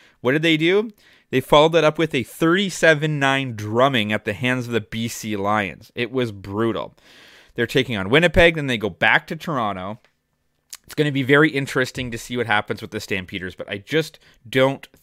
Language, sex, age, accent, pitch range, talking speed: English, male, 20-39, American, 105-130 Hz, 195 wpm